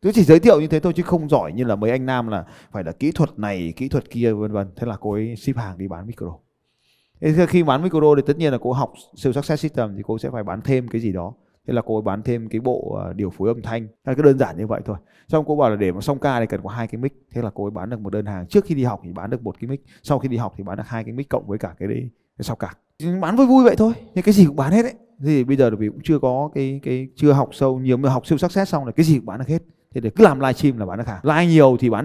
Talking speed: 335 wpm